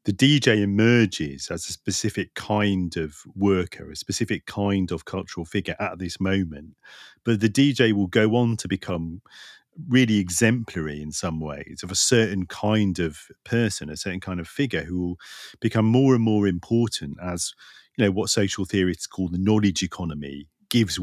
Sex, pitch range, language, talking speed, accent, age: male, 85-110 Hz, English, 170 wpm, British, 40-59